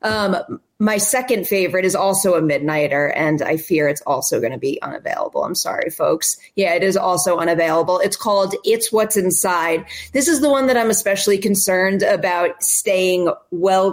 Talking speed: 170 wpm